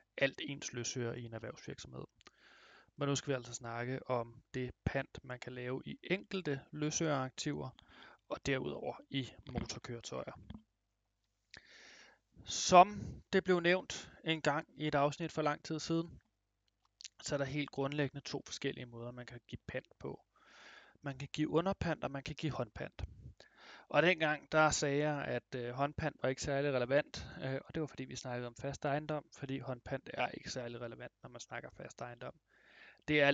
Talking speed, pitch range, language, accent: 165 wpm, 125-145 Hz, Danish, native